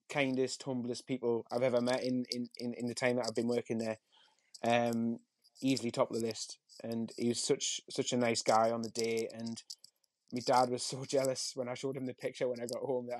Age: 20-39